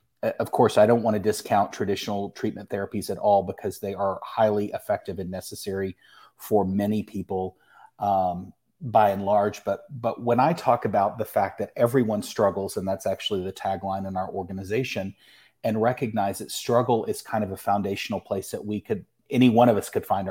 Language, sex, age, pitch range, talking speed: English, male, 30-49, 95-110 Hz, 190 wpm